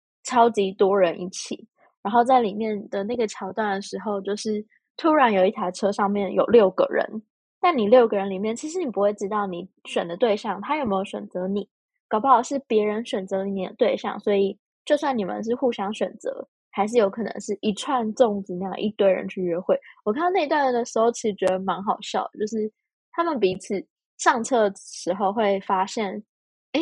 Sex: female